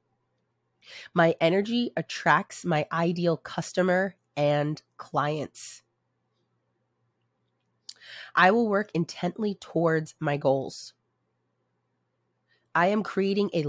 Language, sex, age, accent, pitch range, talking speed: English, female, 30-49, American, 125-175 Hz, 85 wpm